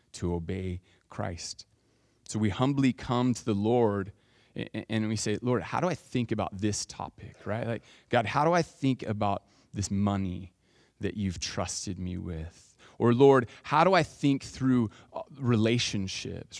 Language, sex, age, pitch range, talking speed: English, male, 30-49, 105-130 Hz, 160 wpm